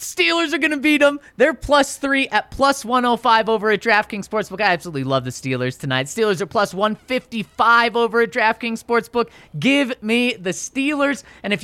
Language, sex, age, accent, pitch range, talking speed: English, male, 30-49, American, 160-230 Hz, 180 wpm